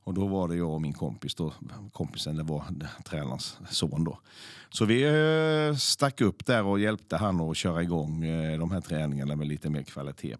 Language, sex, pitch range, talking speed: Swedish, male, 75-100 Hz, 200 wpm